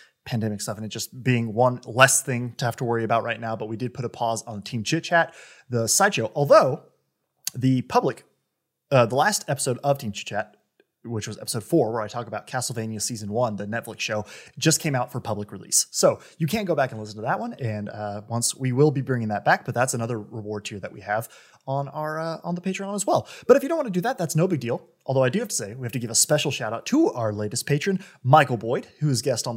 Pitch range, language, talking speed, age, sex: 115-155 Hz, English, 265 wpm, 20-39, male